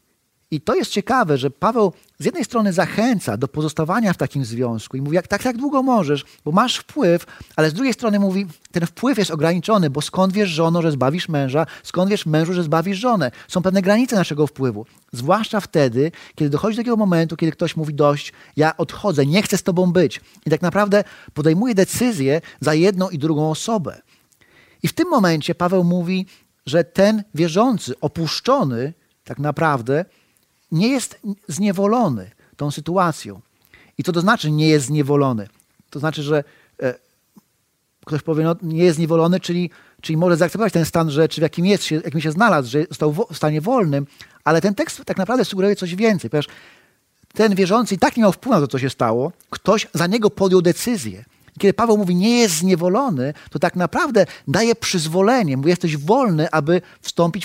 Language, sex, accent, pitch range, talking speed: Polish, male, native, 150-200 Hz, 185 wpm